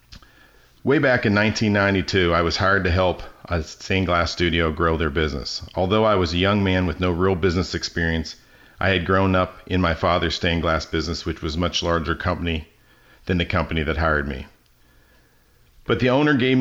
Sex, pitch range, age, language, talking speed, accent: male, 80-100 Hz, 50-69, English, 190 wpm, American